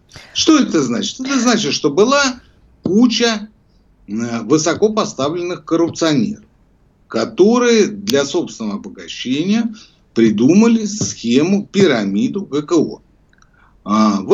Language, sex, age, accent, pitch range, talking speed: Russian, male, 60-79, native, 165-245 Hz, 80 wpm